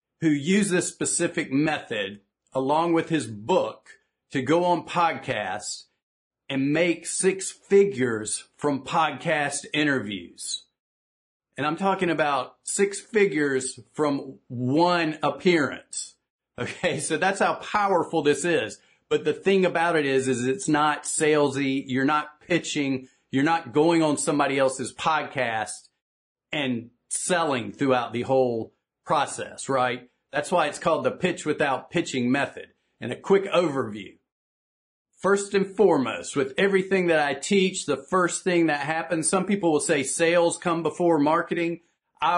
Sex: male